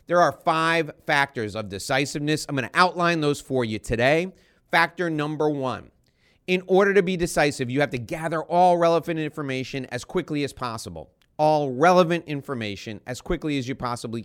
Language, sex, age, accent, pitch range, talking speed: English, male, 30-49, American, 130-175 Hz, 170 wpm